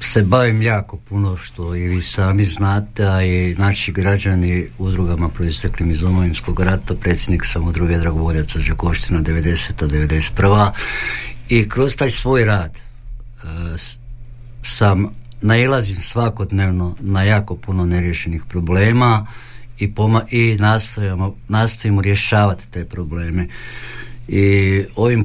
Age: 60-79